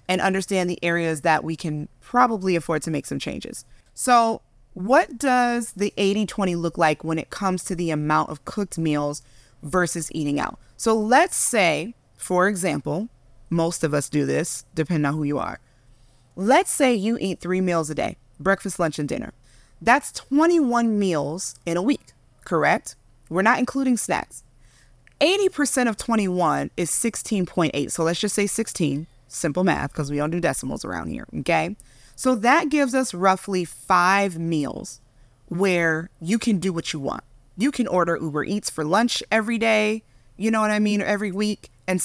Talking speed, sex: 175 wpm, female